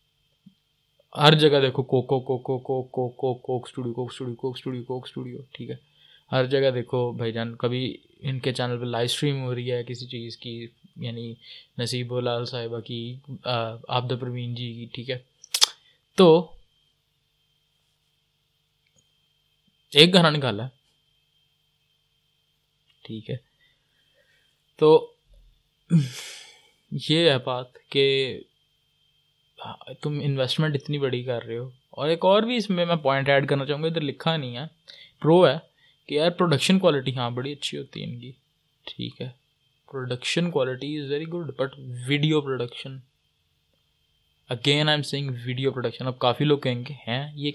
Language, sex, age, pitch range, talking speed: Urdu, male, 20-39, 125-150 Hz, 145 wpm